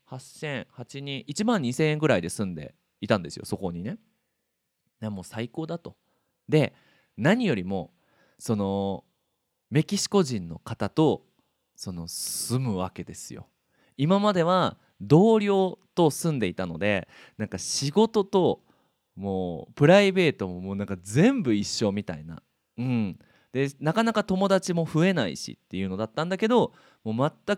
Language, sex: Japanese, male